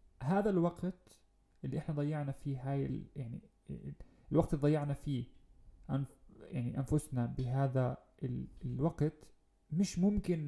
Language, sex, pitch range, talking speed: Arabic, male, 120-155 Hz, 120 wpm